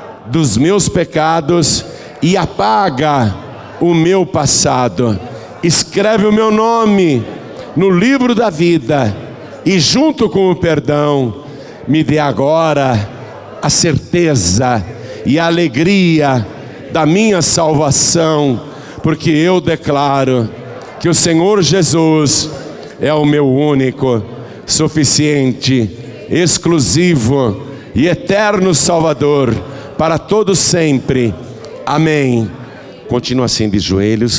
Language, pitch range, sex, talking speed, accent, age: Portuguese, 105-165 Hz, male, 100 wpm, Brazilian, 60-79